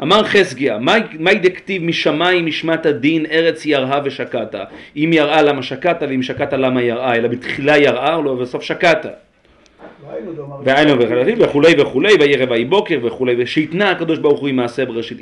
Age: 40-59